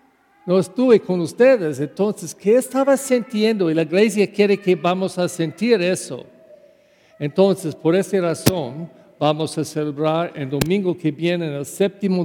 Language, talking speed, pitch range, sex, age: English, 145 wpm, 160-205 Hz, male, 50-69